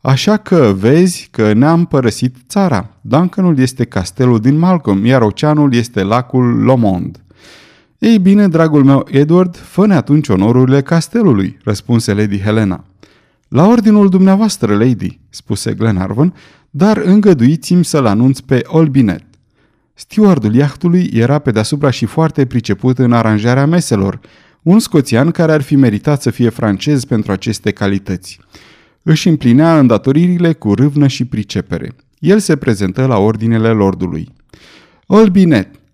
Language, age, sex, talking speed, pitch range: Romanian, 30-49, male, 130 wpm, 105-160 Hz